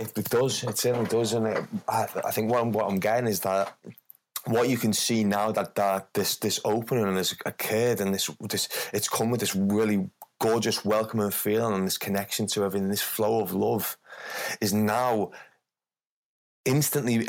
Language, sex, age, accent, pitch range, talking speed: English, male, 20-39, British, 100-115 Hz, 185 wpm